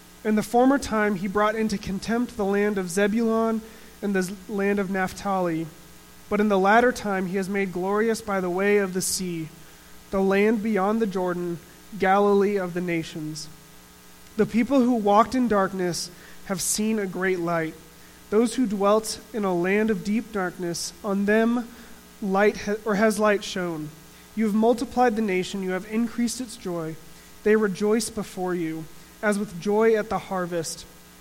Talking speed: 170 wpm